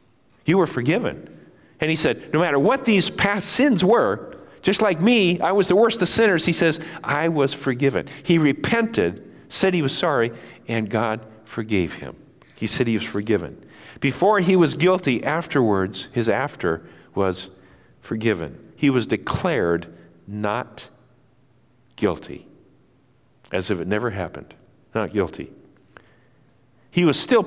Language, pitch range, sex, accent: English, 115-165 Hz, male, American